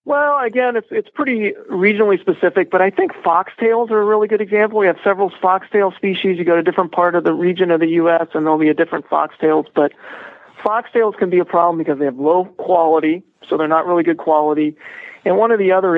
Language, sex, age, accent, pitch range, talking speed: English, male, 40-59, American, 150-190 Hz, 230 wpm